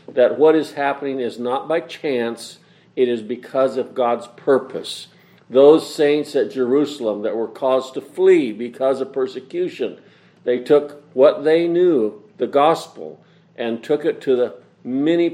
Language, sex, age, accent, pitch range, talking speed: English, male, 50-69, American, 125-160 Hz, 155 wpm